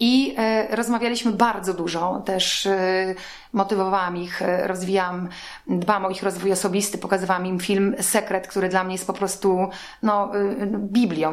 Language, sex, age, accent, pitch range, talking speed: Polish, female, 30-49, native, 185-220 Hz, 130 wpm